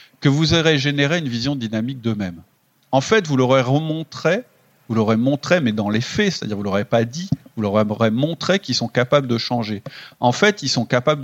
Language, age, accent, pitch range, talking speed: French, 40-59, French, 115-160 Hz, 205 wpm